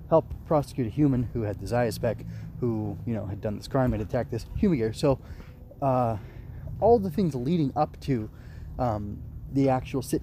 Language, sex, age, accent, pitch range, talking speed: English, male, 20-39, American, 115-140 Hz, 190 wpm